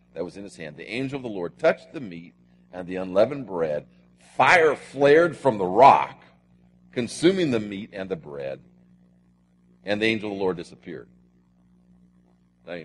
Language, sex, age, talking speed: English, male, 50-69, 170 wpm